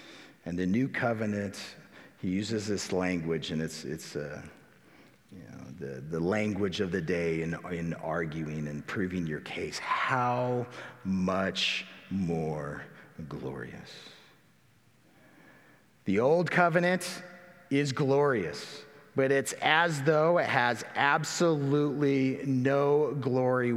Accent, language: American, English